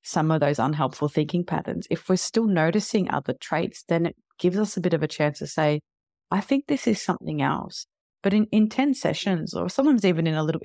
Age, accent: 30-49, Australian